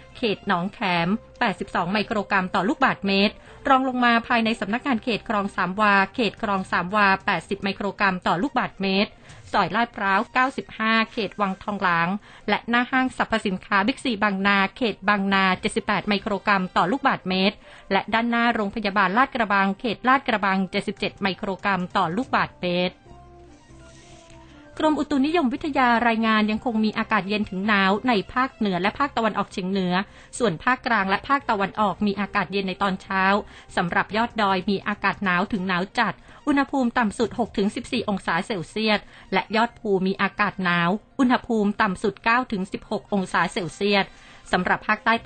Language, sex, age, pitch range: Thai, female, 30-49, 190-225 Hz